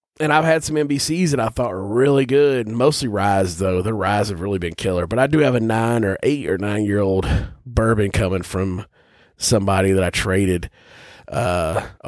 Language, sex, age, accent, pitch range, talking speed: English, male, 30-49, American, 100-140 Hz, 200 wpm